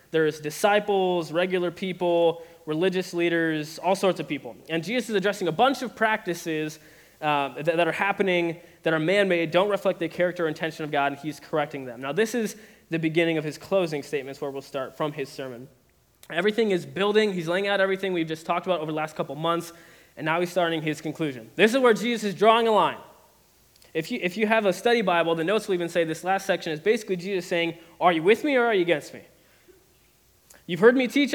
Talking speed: 220 wpm